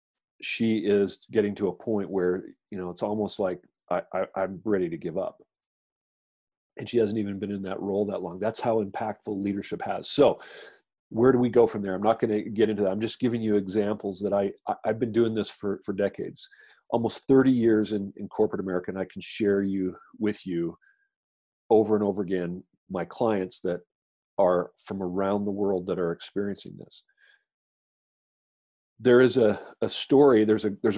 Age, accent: 40-59, American